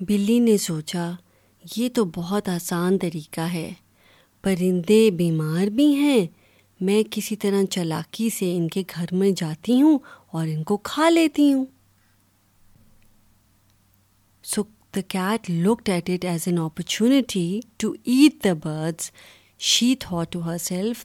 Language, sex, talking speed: Urdu, female, 130 wpm